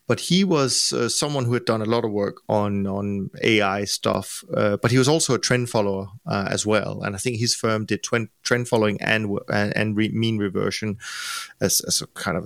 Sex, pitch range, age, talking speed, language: male, 105-120 Hz, 30-49, 215 wpm, English